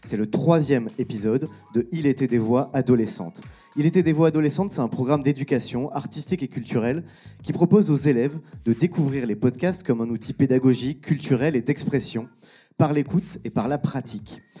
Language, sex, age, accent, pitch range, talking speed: French, male, 30-49, French, 120-150 Hz, 175 wpm